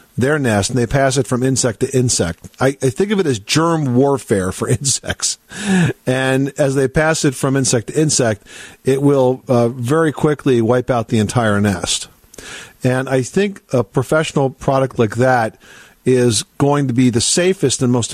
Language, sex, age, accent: English, male, 50-69, American